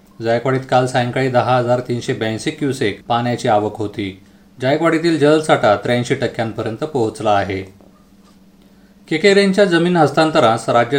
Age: 30-49